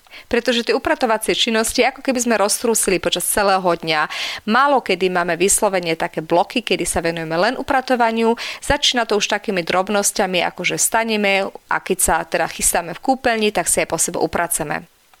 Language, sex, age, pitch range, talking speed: Slovak, female, 30-49, 190-250 Hz, 170 wpm